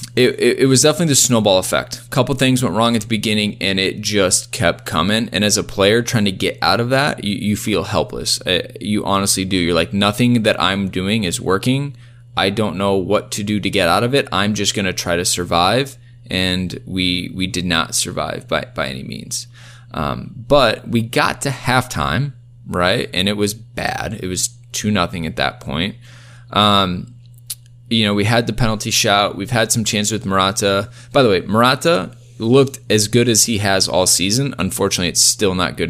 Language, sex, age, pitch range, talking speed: English, male, 20-39, 100-120 Hz, 205 wpm